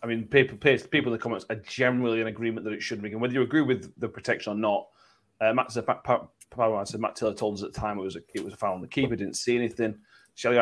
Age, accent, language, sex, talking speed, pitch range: 30-49, British, English, male, 300 wpm, 105-125 Hz